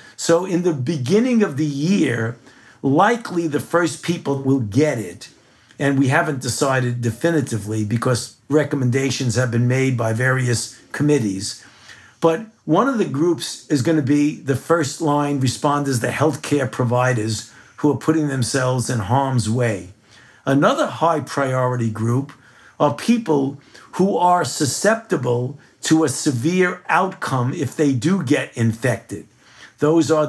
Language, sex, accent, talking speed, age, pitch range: English, male, American, 135 wpm, 50-69, 125-160 Hz